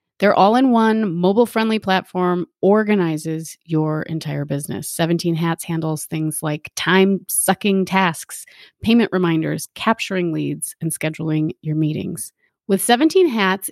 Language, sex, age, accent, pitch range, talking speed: English, female, 30-49, American, 170-220 Hz, 115 wpm